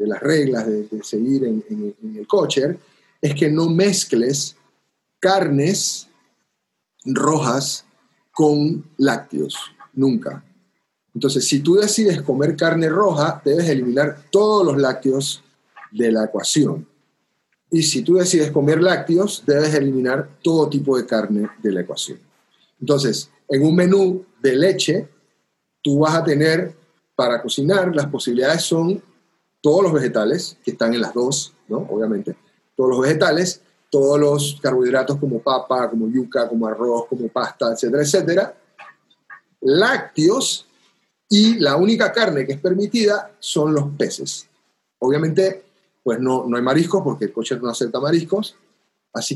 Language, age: Spanish, 40-59